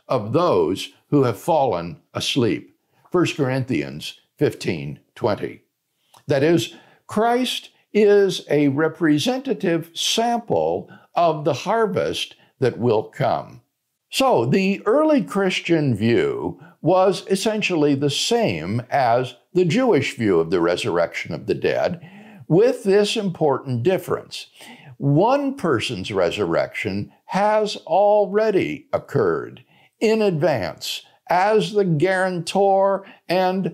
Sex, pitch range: male, 145-210 Hz